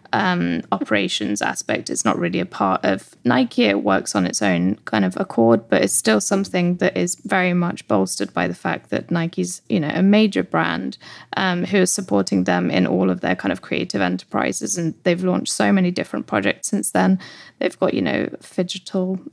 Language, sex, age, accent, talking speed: English, female, 10-29, British, 200 wpm